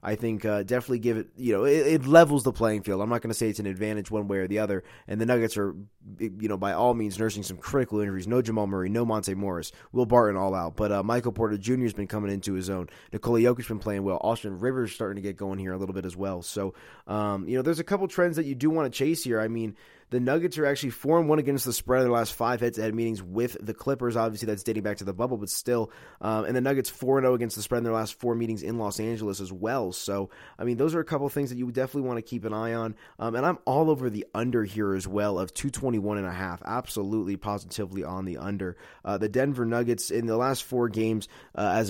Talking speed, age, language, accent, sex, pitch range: 260 wpm, 20-39, English, American, male, 105-125 Hz